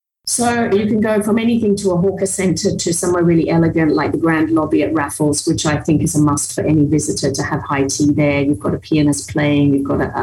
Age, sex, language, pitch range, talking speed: 40-59, female, English, 145-175 Hz, 245 wpm